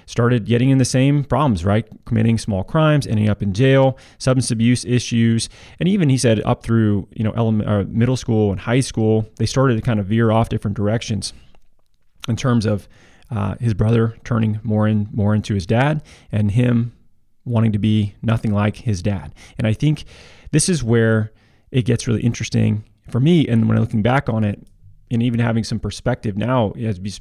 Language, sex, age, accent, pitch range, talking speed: English, male, 30-49, American, 105-120 Hz, 195 wpm